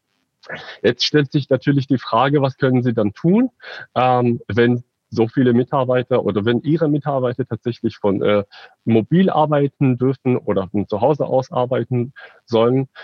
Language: German